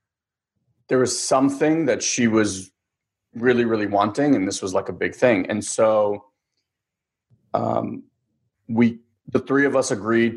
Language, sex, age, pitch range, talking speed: English, male, 30-49, 105-130 Hz, 145 wpm